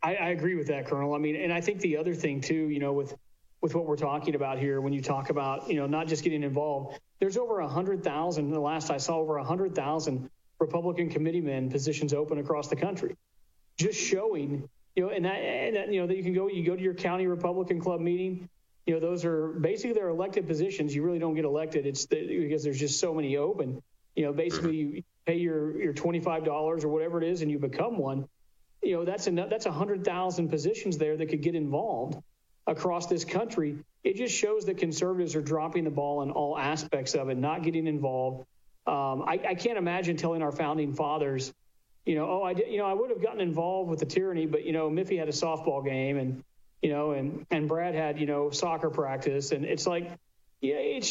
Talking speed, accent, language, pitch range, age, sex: 225 wpm, American, English, 150-180 Hz, 40-59, male